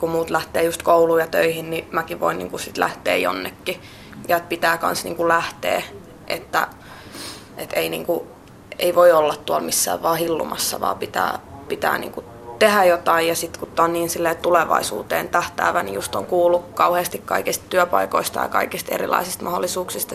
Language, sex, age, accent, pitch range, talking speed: Finnish, female, 20-39, native, 150-175 Hz, 165 wpm